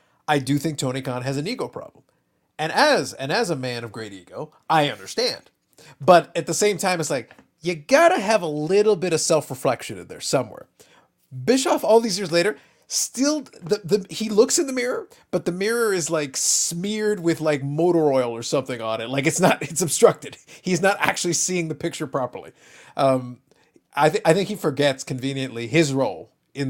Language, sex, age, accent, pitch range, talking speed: English, male, 30-49, American, 140-200 Hz, 200 wpm